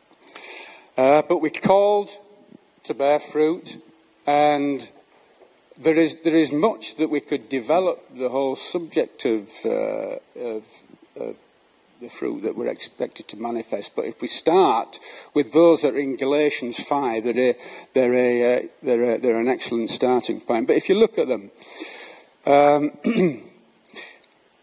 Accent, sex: British, male